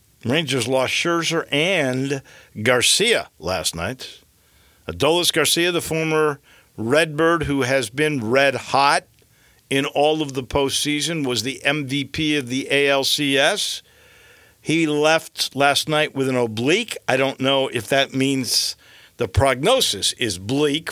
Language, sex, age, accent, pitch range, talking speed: English, male, 50-69, American, 115-150 Hz, 130 wpm